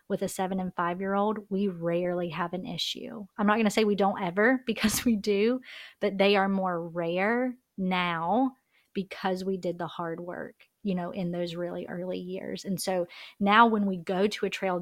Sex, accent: female, American